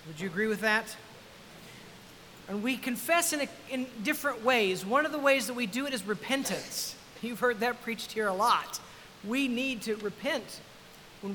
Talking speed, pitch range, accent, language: 185 wpm, 200-255 Hz, American, English